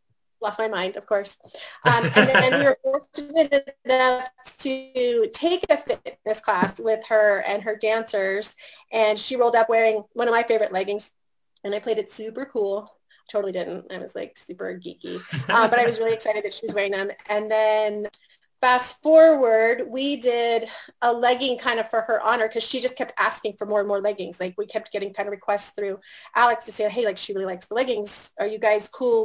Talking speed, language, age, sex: 205 wpm, English, 30-49, female